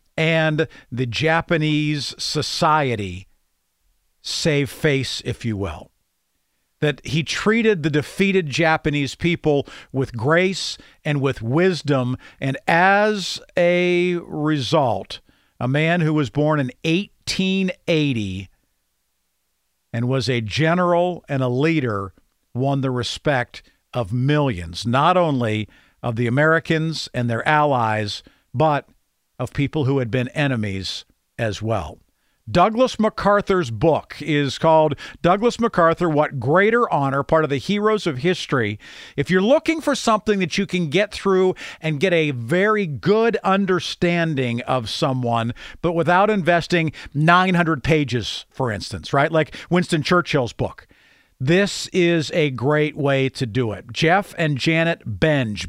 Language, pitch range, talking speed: English, 125-175 Hz, 130 wpm